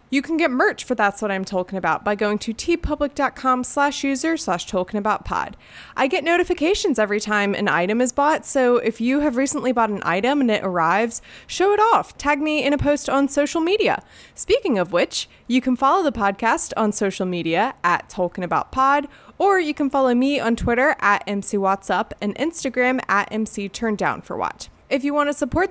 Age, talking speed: 20-39, 185 wpm